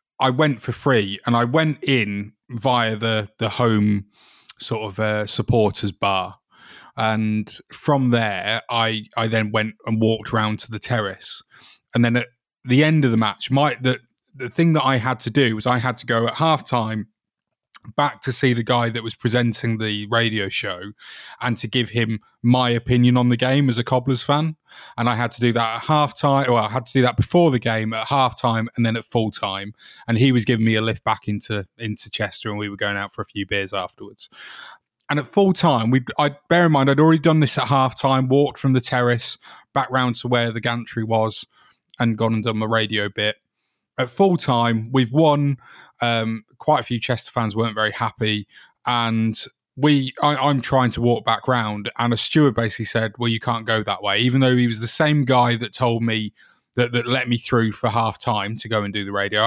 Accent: British